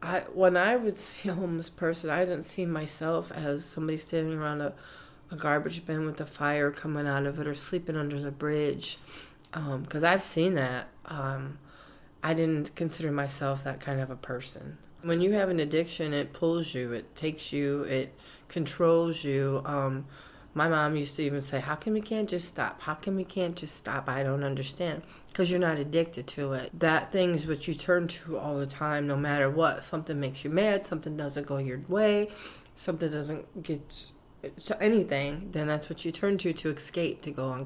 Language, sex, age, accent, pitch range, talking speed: English, female, 40-59, American, 145-170 Hz, 200 wpm